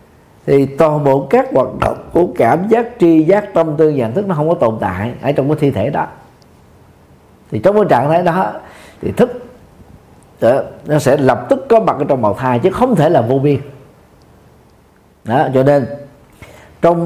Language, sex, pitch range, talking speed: Vietnamese, male, 115-170 Hz, 195 wpm